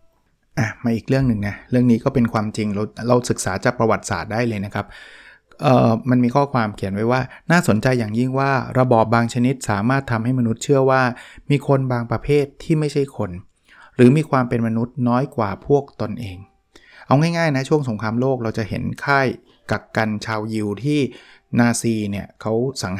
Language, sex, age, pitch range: Thai, male, 20-39, 110-135 Hz